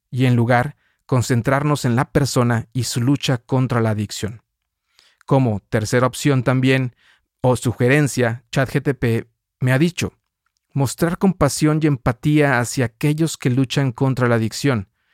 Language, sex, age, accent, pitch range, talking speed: Spanish, male, 40-59, Mexican, 120-140 Hz, 135 wpm